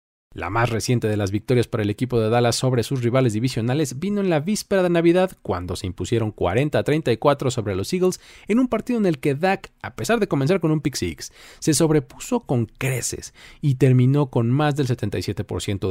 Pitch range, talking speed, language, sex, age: 105-160 Hz, 200 wpm, Spanish, male, 40-59